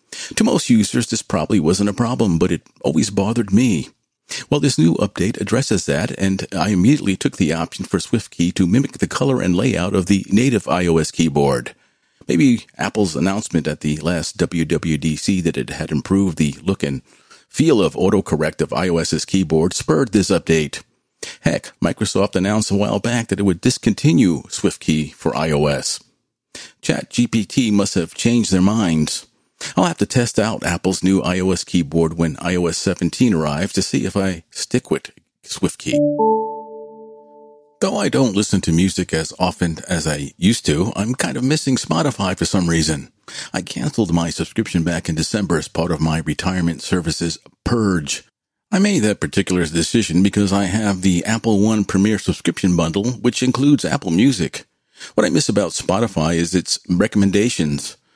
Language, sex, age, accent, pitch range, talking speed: English, male, 50-69, American, 85-110 Hz, 165 wpm